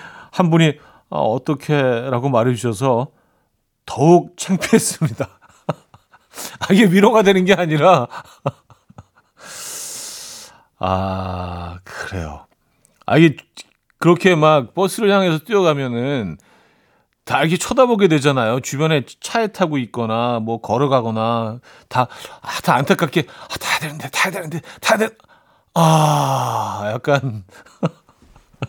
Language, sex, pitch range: Korean, male, 110-165 Hz